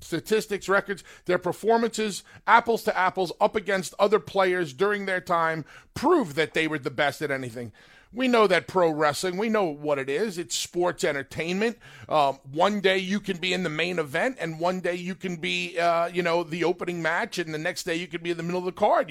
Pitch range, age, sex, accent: 155-200 Hz, 40-59, male, American